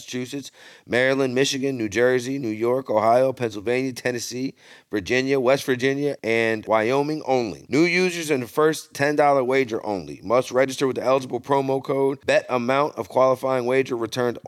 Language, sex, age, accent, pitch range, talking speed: English, male, 40-59, American, 120-130 Hz, 155 wpm